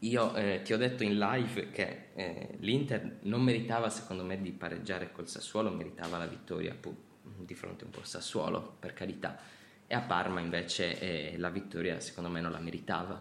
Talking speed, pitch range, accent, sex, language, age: 185 wpm, 90-110 Hz, native, male, Italian, 20-39